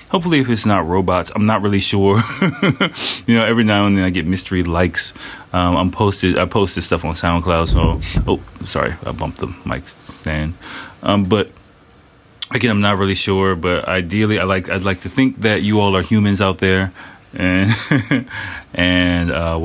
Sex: male